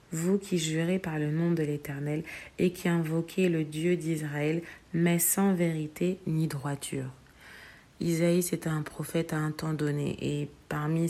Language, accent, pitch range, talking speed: French, French, 150-170 Hz, 155 wpm